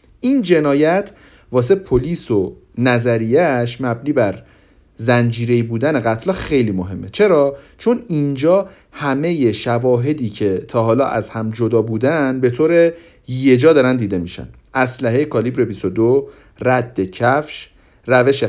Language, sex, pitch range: Persian, male, 115-150 Hz